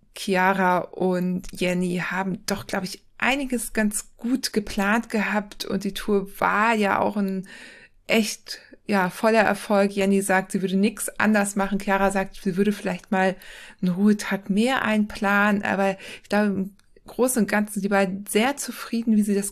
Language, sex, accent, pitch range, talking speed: German, female, German, 190-220 Hz, 165 wpm